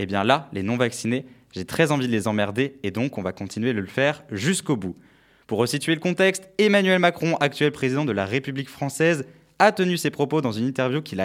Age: 20-39